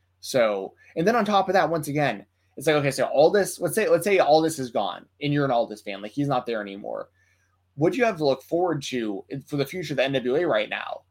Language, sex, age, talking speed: English, male, 20-39, 265 wpm